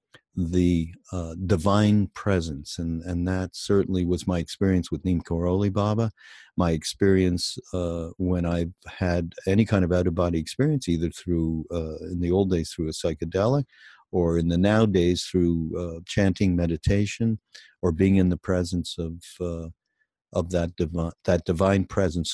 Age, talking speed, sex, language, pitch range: 50-69, 160 wpm, male, English, 85-100 Hz